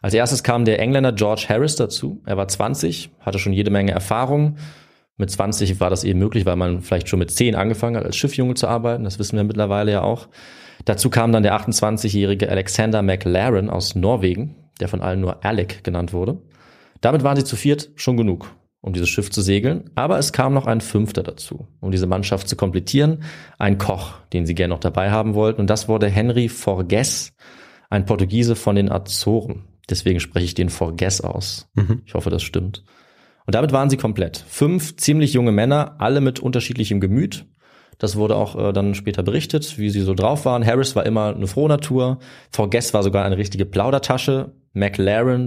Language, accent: German, German